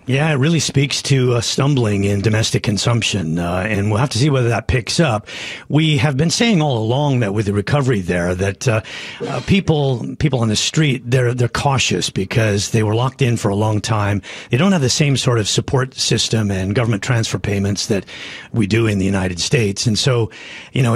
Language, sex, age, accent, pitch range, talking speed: English, male, 40-59, American, 105-135 Hz, 215 wpm